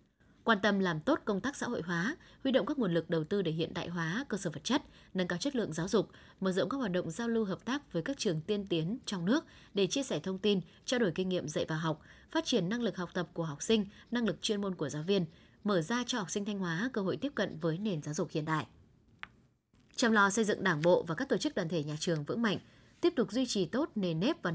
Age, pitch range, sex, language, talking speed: 20-39, 170-230 Hz, female, Vietnamese, 280 wpm